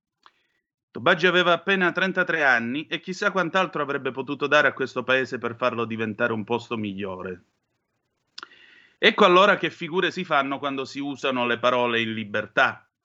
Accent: native